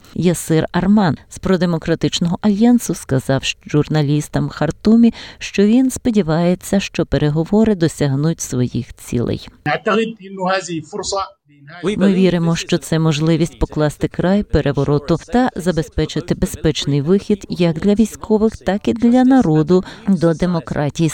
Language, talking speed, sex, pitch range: Ukrainian, 105 wpm, female, 150-195 Hz